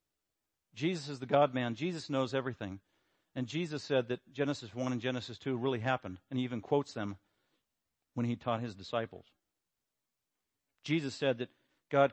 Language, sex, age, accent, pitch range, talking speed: English, male, 50-69, American, 125-150 Hz, 160 wpm